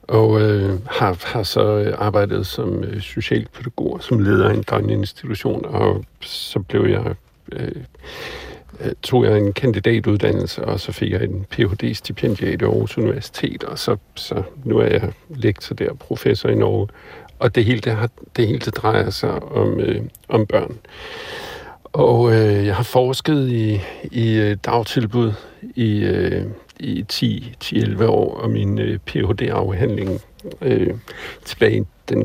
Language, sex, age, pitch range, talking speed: Danish, male, 60-79, 100-120 Hz, 145 wpm